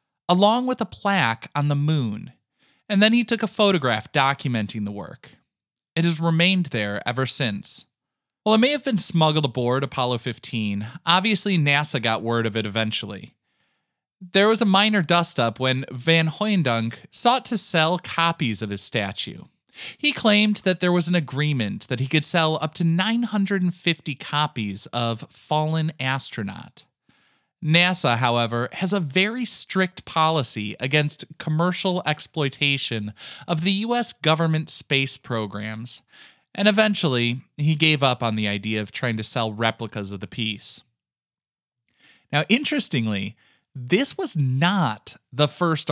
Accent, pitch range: American, 120-185 Hz